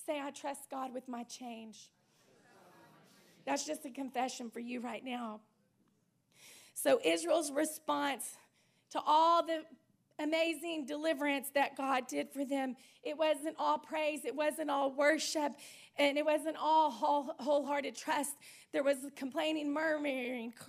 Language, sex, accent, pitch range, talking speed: English, female, American, 285-330 Hz, 135 wpm